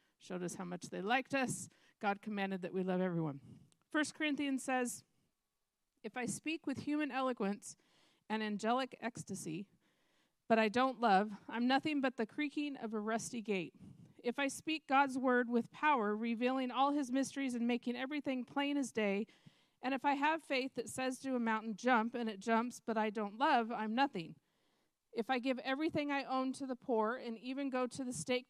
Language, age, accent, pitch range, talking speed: English, 40-59, American, 215-260 Hz, 190 wpm